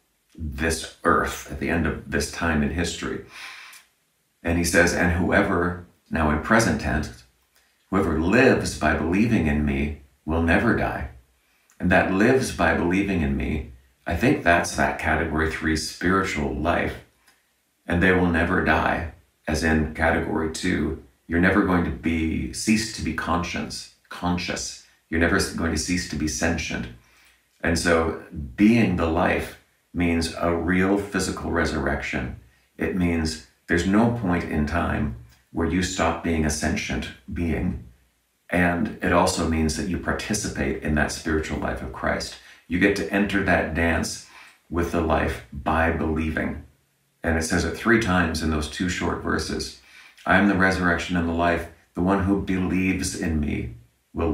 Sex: male